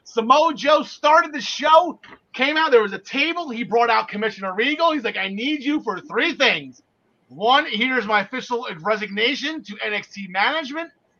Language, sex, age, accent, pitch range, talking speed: English, male, 30-49, American, 195-255 Hz, 170 wpm